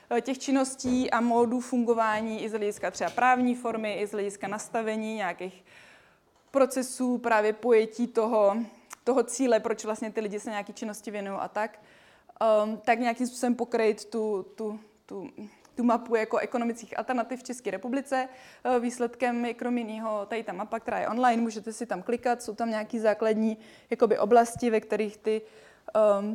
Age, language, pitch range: 20-39, Czech, 210-240 Hz